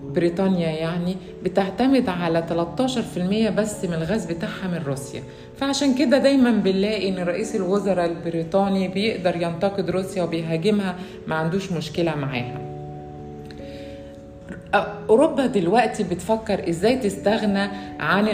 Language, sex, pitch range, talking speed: Arabic, female, 170-220 Hz, 110 wpm